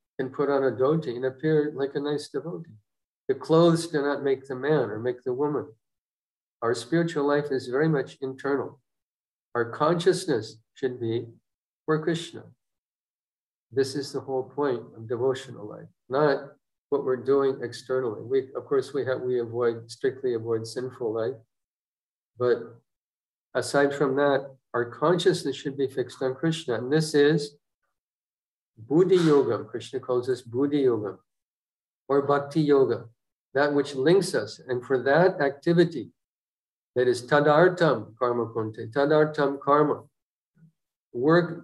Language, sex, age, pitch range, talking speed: English, male, 50-69, 125-155 Hz, 145 wpm